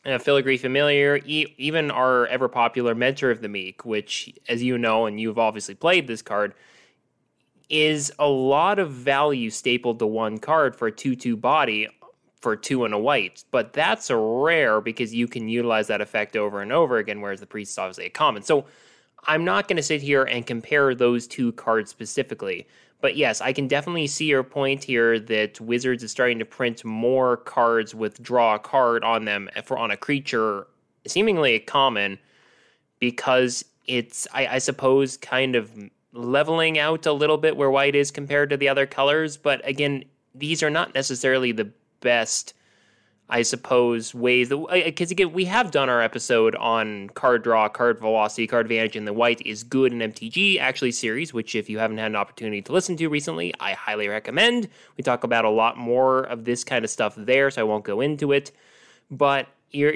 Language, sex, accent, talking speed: English, male, American, 190 wpm